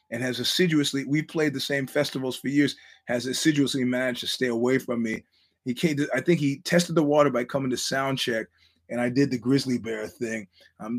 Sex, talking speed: male, 220 wpm